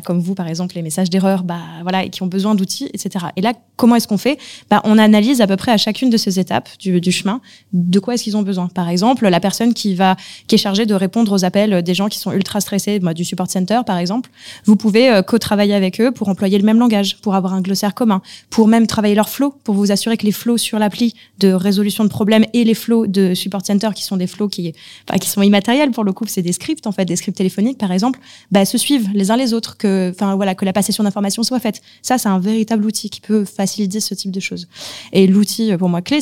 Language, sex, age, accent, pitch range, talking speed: French, female, 20-39, French, 190-220 Hz, 260 wpm